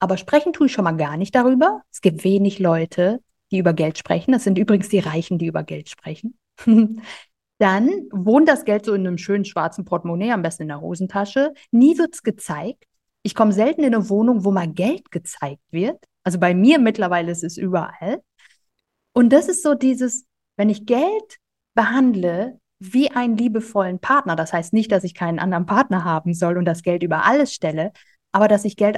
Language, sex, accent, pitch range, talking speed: German, female, German, 180-255 Hz, 200 wpm